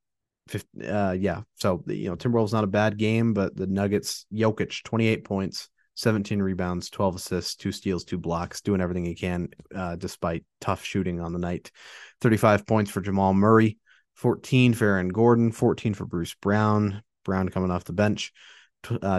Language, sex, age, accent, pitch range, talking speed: English, male, 30-49, American, 95-110 Hz, 170 wpm